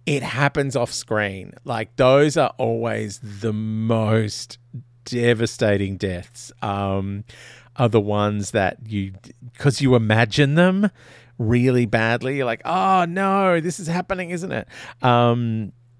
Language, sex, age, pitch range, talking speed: English, male, 40-59, 110-145 Hz, 130 wpm